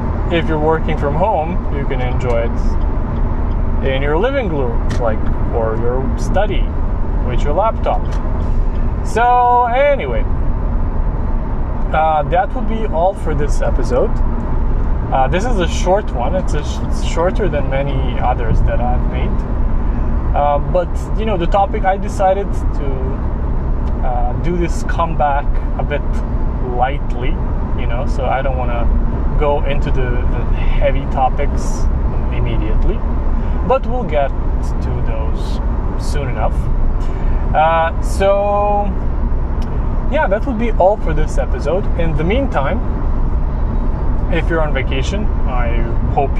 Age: 20-39